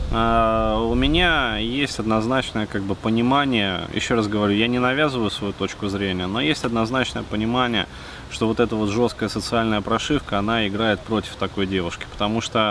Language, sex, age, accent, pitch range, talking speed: Russian, male, 20-39, native, 90-115 Hz, 150 wpm